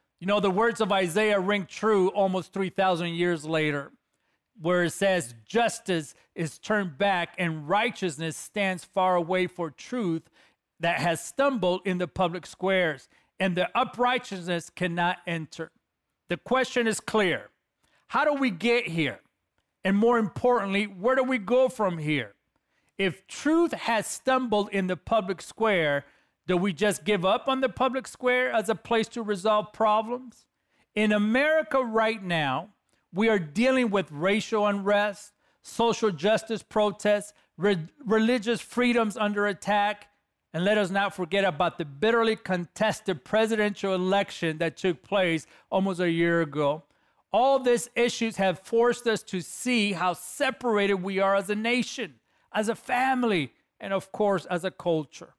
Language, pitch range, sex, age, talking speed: English, 180-225 Hz, male, 40-59, 150 wpm